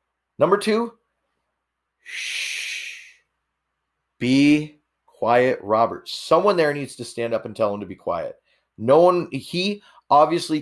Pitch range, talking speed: 115-150 Hz, 125 wpm